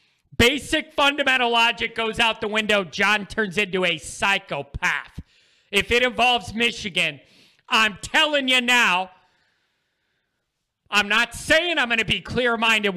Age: 40-59